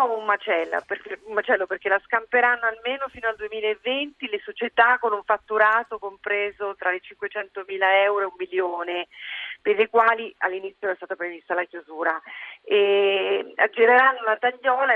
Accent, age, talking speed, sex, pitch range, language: native, 40-59, 150 wpm, female, 185-230 Hz, Italian